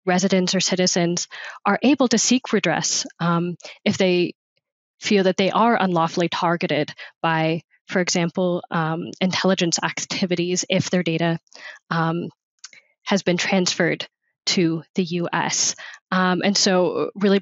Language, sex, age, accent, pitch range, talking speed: English, female, 10-29, American, 175-205 Hz, 125 wpm